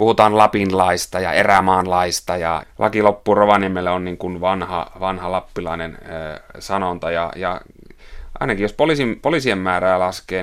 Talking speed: 125 wpm